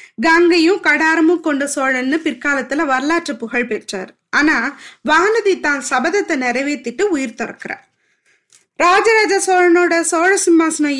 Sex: female